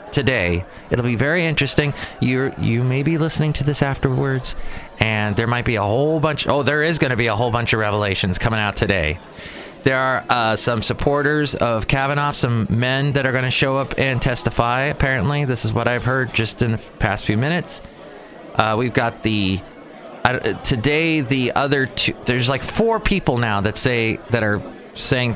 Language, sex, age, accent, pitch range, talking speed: English, male, 30-49, American, 110-150 Hz, 195 wpm